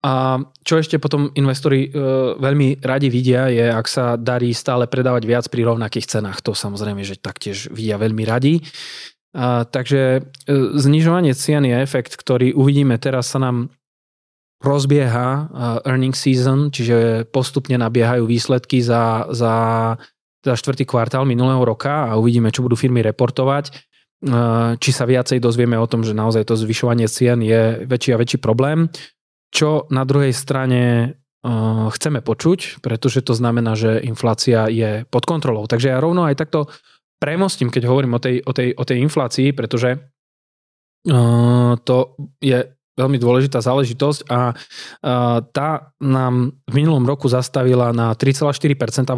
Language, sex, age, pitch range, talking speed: Slovak, male, 20-39, 120-140 Hz, 150 wpm